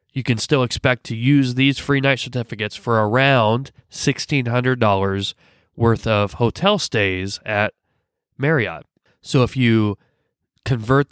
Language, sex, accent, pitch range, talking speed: English, male, American, 110-135 Hz, 125 wpm